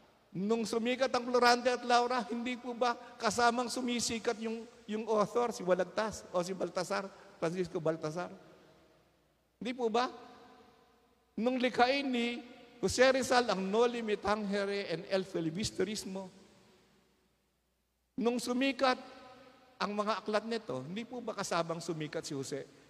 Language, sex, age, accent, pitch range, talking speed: Filipino, male, 50-69, native, 180-235 Hz, 130 wpm